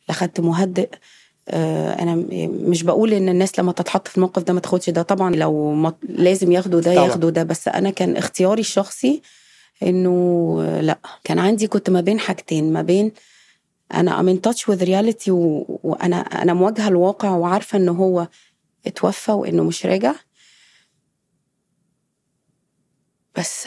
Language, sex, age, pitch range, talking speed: Arabic, female, 30-49, 180-205 Hz, 135 wpm